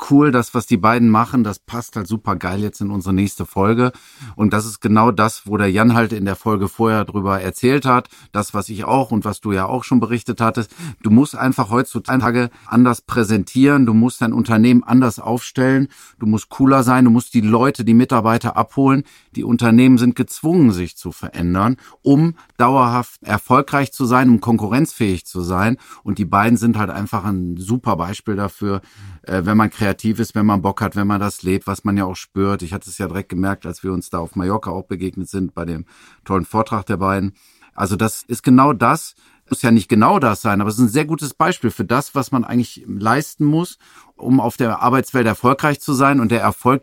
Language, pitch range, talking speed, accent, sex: German, 105-125 Hz, 215 wpm, German, male